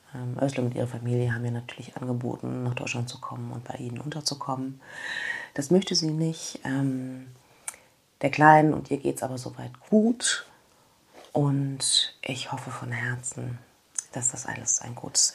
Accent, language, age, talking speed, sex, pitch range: German, German, 30-49, 155 wpm, female, 125-150 Hz